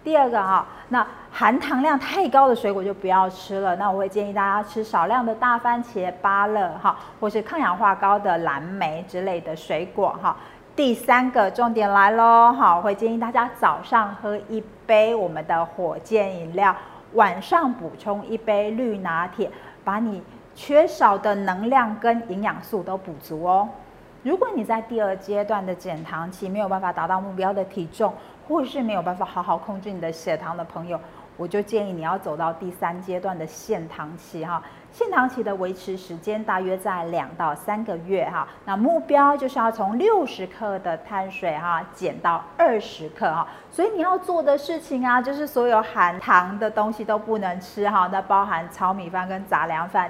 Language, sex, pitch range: Chinese, female, 180-230 Hz